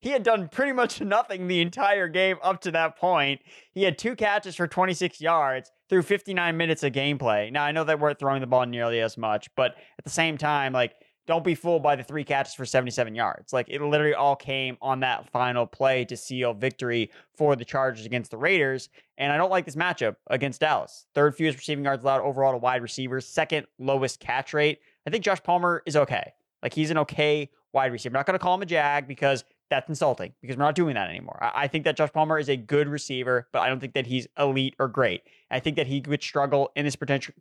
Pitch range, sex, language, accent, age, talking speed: 130-160 Hz, male, English, American, 20-39, 235 wpm